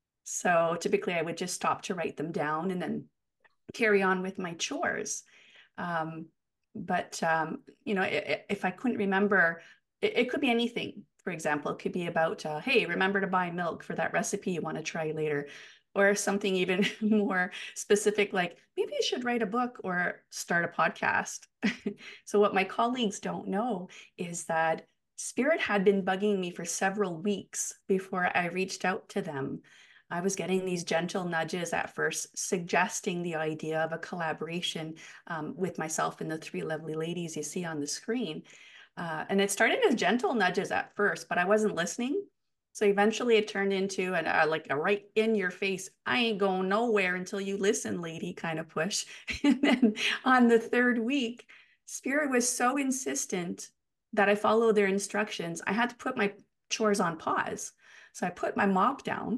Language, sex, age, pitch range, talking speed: English, female, 30-49, 175-215 Hz, 185 wpm